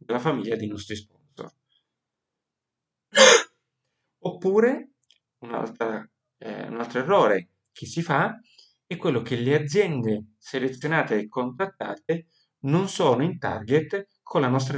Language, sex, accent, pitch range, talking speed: Italian, male, native, 120-160 Hz, 115 wpm